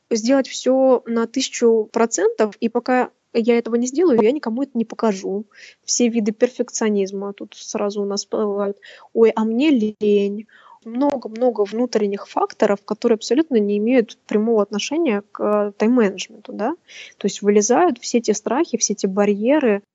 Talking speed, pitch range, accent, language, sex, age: 145 wpm, 205-245 Hz, native, Russian, female, 20-39